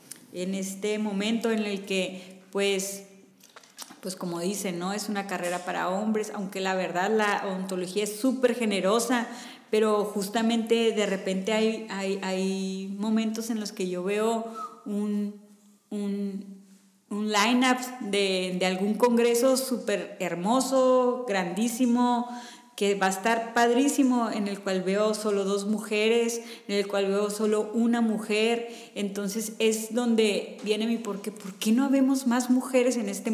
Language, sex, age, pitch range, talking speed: Spanish, female, 30-49, 195-230 Hz, 140 wpm